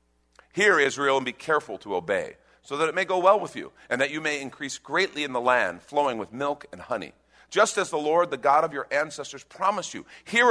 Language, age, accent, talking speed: English, 50-69, American, 235 wpm